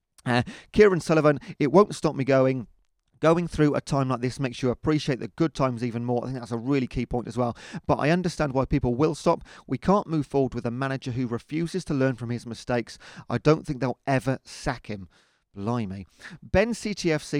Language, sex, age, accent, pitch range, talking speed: English, male, 30-49, British, 115-145 Hz, 215 wpm